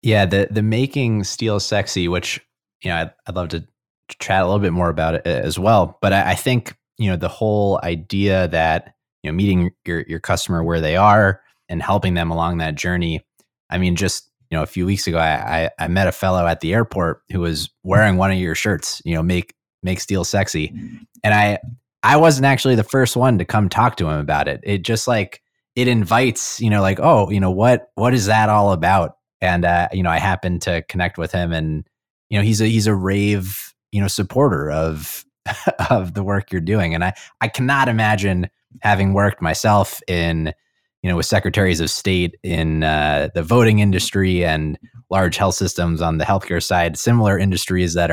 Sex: male